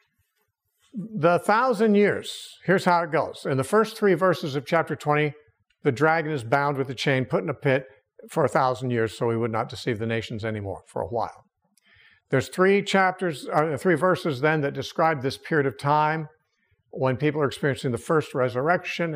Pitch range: 125-170 Hz